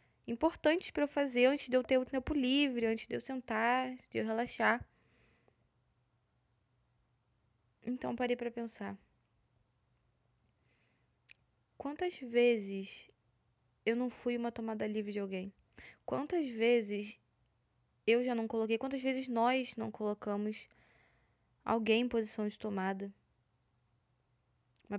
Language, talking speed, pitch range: Portuguese, 120 wpm, 195-255 Hz